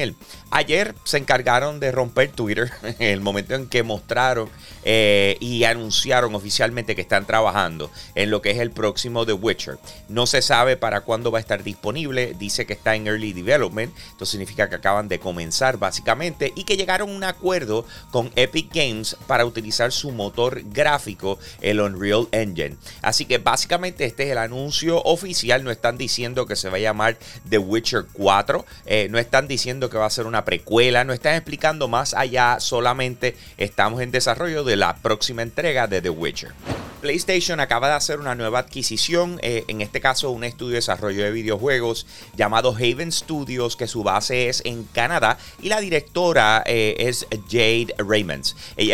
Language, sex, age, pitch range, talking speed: Spanish, male, 30-49, 105-130 Hz, 180 wpm